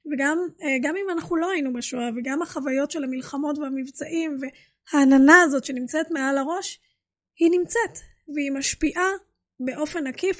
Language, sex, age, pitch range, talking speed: Hebrew, female, 20-39, 270-335 Hz, 135 wpm